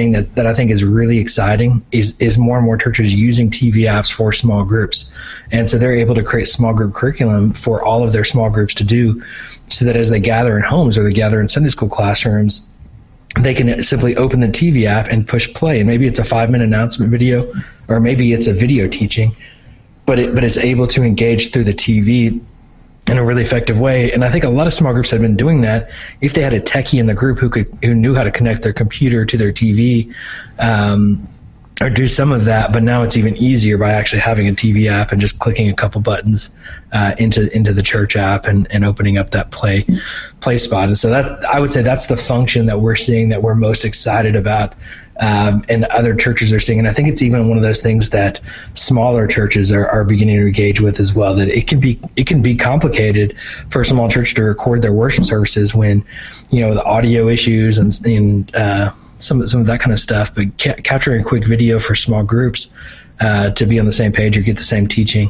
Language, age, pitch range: English, 20-39, 105-120 Hz